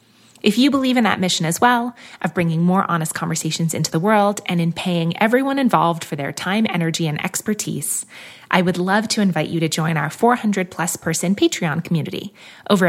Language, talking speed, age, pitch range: English, 195 wpm, 20-39, 170-215 Hz